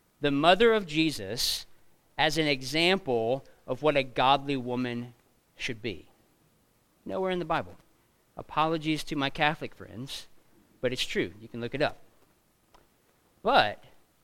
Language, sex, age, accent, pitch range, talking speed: English, male, 40-59, American, 130-165 Hz, 135 wpm